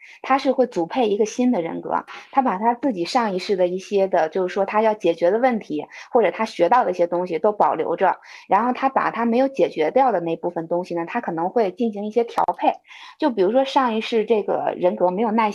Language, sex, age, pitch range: Chinese, female, 20-39, 175-235 Hz